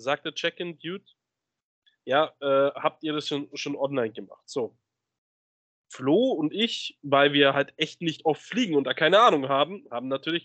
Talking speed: 170 wpm